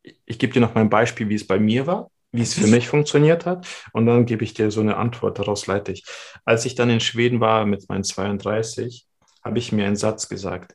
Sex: male